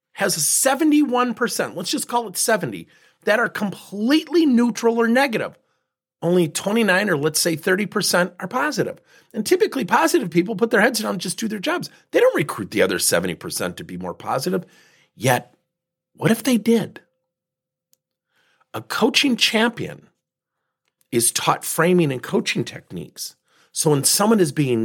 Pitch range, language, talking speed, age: 155-235 Hz, English, 150 wpm, 40-59